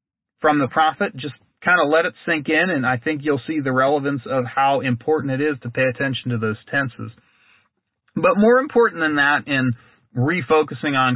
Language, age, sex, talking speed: English, 30-49, male, 195 wpm